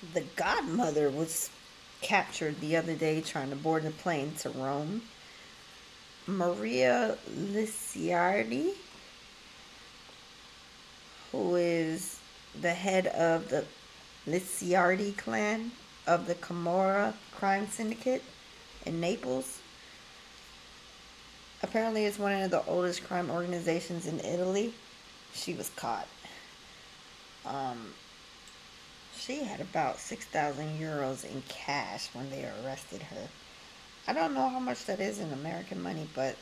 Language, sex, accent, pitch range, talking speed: English, female, American, 150-195 Hz, 110 wpm